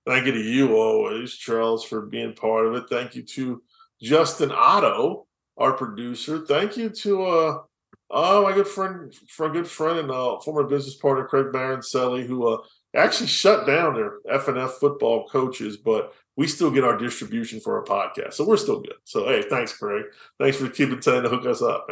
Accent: American